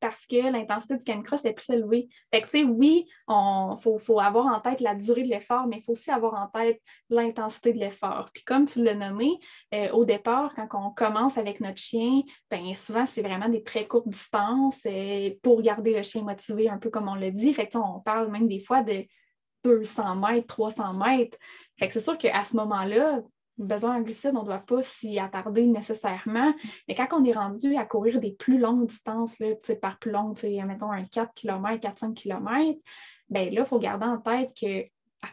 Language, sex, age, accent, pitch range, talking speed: French, female, 10-29, Canadian, 205-240 Hz, 210 wpm